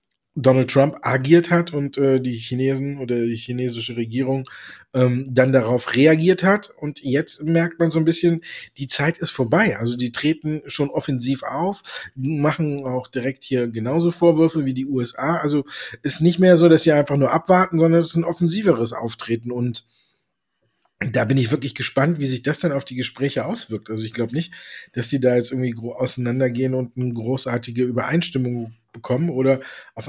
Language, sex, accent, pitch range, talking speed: German, male, German, 125-155 Hz, 180 wpm